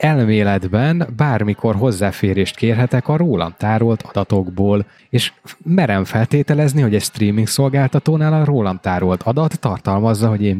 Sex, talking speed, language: male, 125 wpm, Hungarian